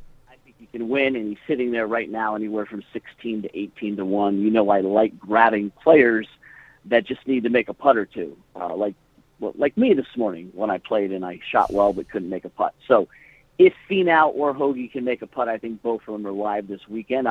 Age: 50-69